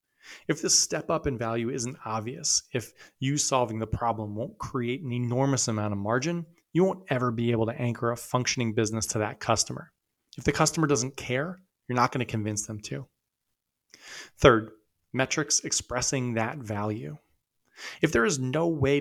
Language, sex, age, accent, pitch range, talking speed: English, male, 30-49, American, 115-140 Hz, 175 wpm